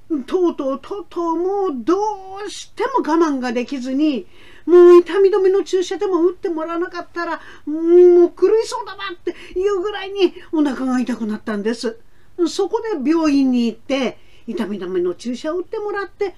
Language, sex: Japanese, female